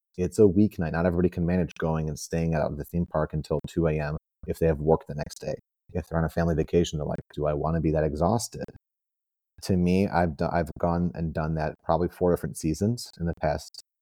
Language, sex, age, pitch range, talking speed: English, male, 30-49, 80-95 Hz, 240 wpm